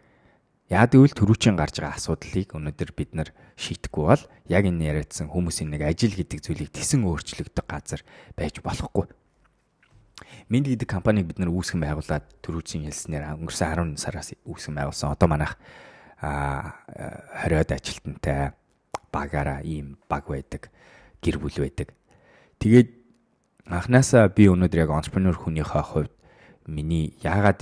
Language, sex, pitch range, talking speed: English, male, 75-90 Hz, 55 wpm